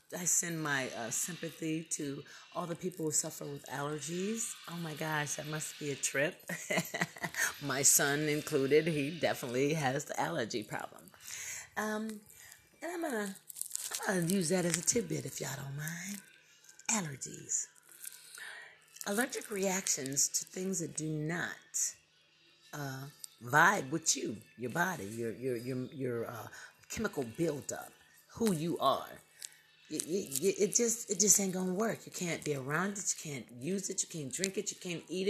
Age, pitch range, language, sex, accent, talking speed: 40-59, 145-205 Hz, English, female, American, 155 wpm